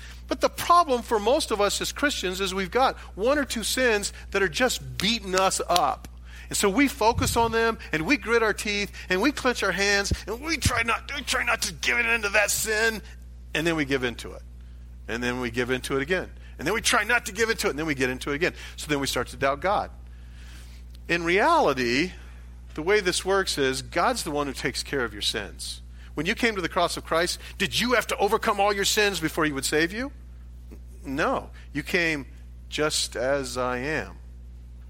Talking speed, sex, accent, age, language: 225 wpm, male, American, 40-59, English